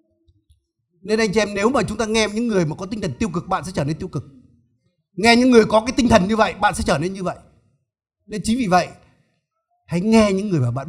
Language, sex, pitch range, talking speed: Vietnamese, male, 135-220 Hz, 265 wpm